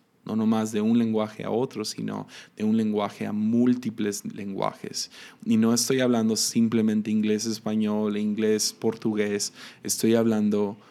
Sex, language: male, Spanish